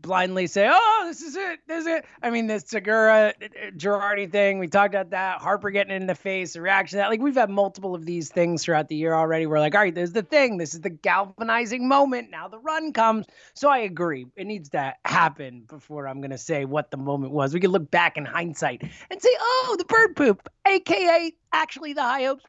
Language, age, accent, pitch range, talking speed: English, 30-49, American, 175-275 Hz, 230 wpm